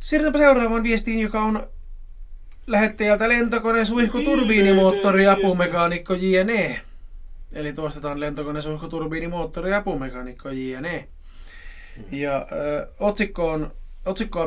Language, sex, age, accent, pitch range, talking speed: Finnish, male, 20-39, native, 150-210 Hz, 80 wpm